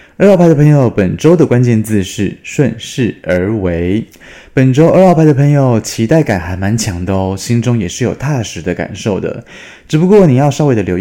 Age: 20-39